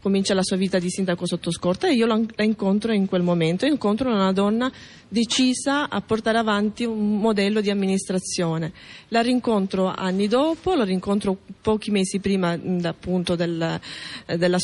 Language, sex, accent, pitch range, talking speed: Italian, female, native, 185-220 Hz, 150 wpm